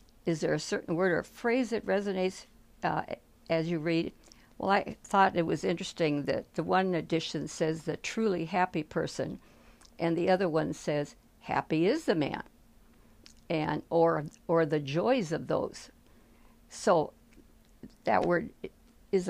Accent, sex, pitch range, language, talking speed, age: American, female, 160-185 Hz, English, 150 wpm, 60-79